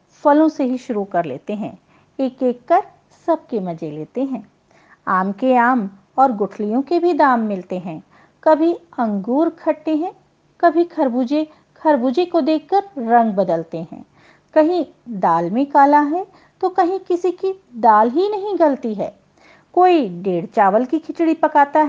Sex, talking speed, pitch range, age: female, 155 wpm, 215-335 Hz, 50-69